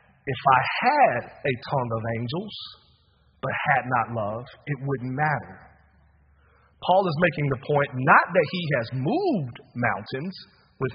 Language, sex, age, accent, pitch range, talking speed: English, male, 40-59, American, 120-200 Hz, 145 wpm